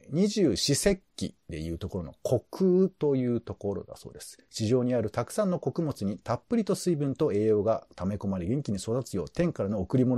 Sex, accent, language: male, native, Japanese